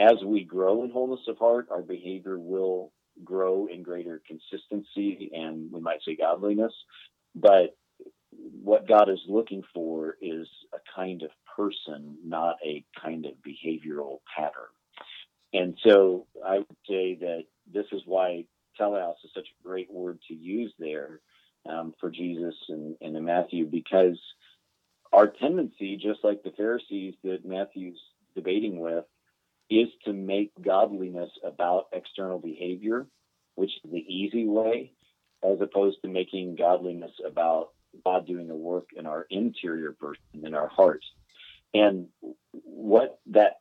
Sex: male